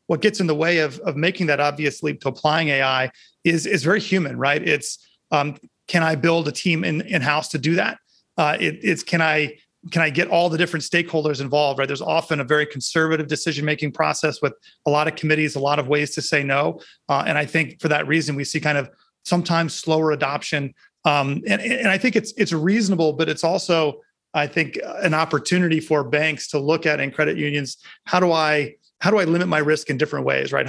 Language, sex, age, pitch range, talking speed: English, male, 30-49, 145-170 Hz, 225 wpm